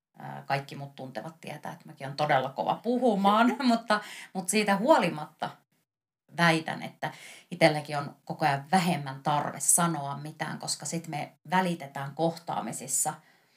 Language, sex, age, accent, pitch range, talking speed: Finnish, female, 30-49, native, 140-185 Hz, 130 wpm